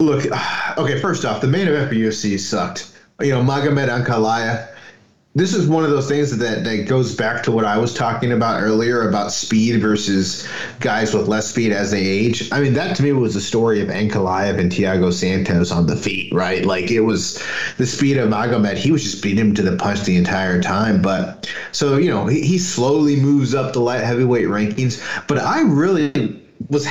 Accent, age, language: American, 30-49, English